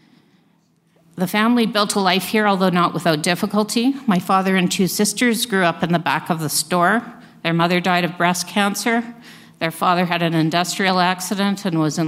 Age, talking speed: 50-69, 190 wpm